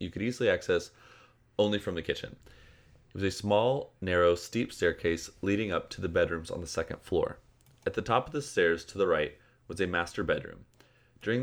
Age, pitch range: 30-49, 85-110 Hz